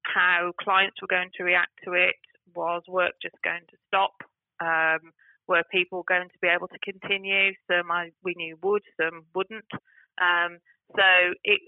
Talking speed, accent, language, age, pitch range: 170 wpm, British, English, 30-49, 175-190 Hz